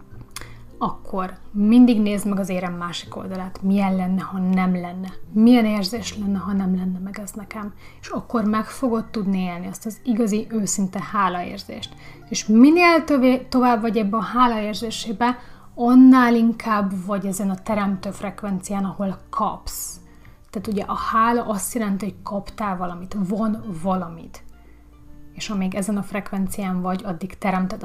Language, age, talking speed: Hungarian, 30-49, 145 wpm